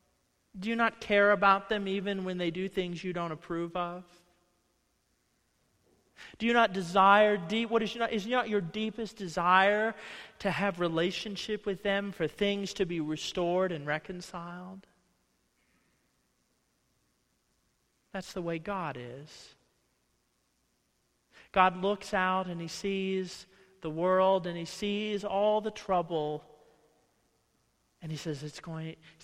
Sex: male